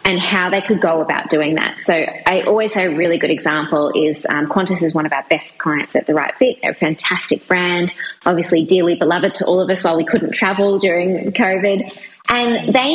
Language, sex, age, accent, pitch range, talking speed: English, female, 20-39, Australian, 160-190 Hz, 225 wpm